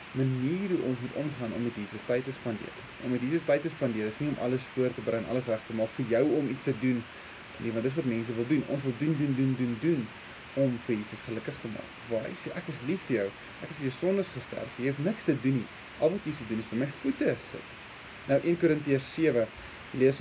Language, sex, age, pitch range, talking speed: English, male, 20-39, 115-150 Hz, 265 wpm